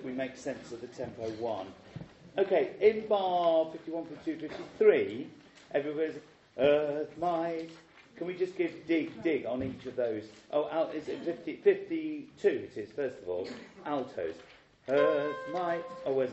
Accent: British